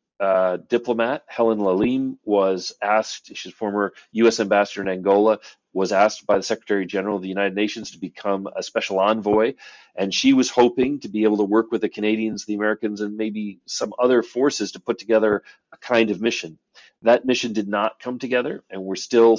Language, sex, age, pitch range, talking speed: English, male, 40-59, 100-115 Hz, 195 wpm